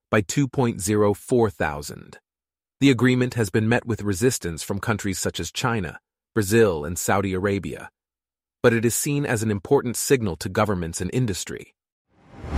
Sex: male